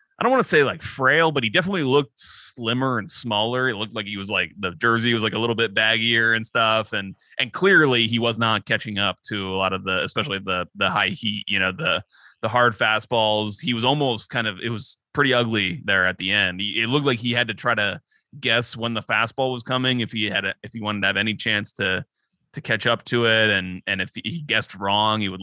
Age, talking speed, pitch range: 20-39, 250 wpm, 100-120 Hz